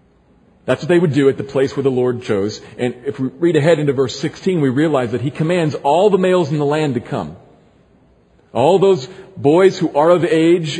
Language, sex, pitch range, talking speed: English, male, 115-170 Hz, 220 wpm